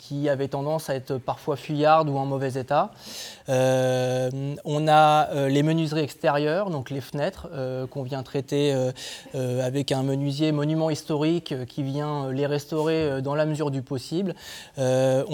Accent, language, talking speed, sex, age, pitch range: French, French, 165 wpm, male, 20-39, 135-160 Hz